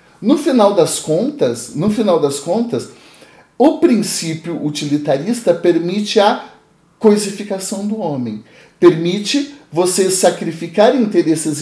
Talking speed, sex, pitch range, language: 90 wpm, male, 150-200 Hz, Portuguese